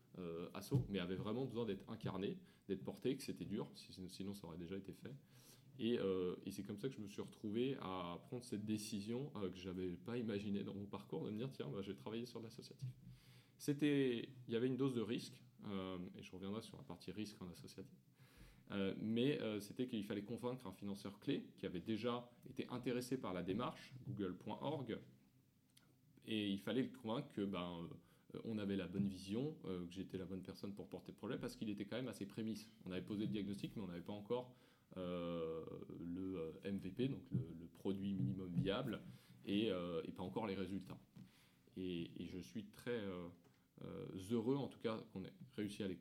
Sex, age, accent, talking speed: male, 20-39, French, 215 wpm